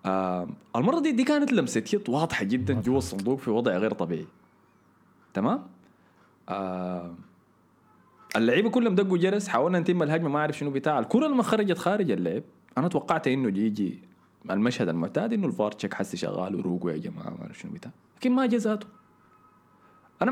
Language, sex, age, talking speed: Arabic, male, 20-39, 165 wpm